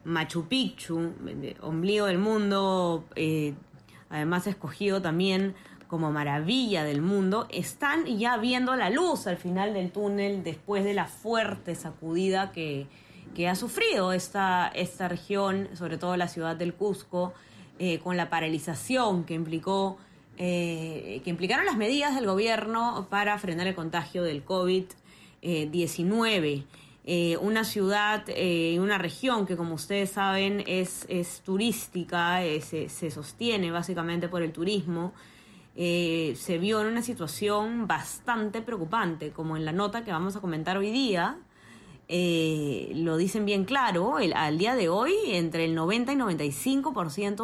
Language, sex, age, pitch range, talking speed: Spanish, female, 20-39, 165-205 Hz, 140 wpm